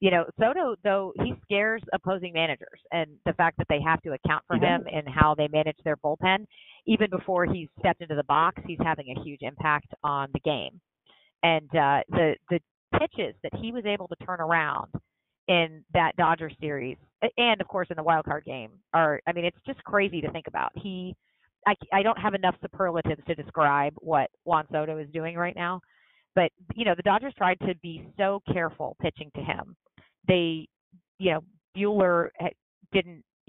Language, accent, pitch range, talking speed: English, American, 150-185 Hz, 190 wpm